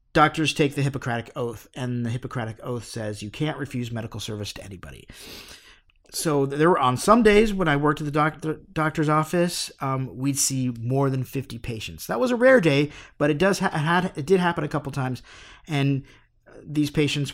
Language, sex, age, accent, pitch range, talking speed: English, male, 50-69, American, 120-155 Hz, 190 wpm